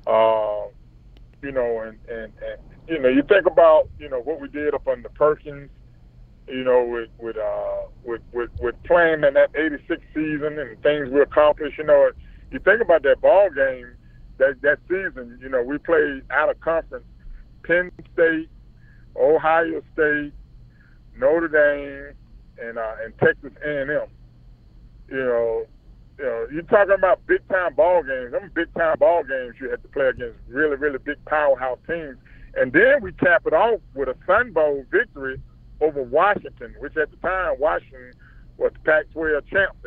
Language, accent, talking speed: English, American, 170 wpm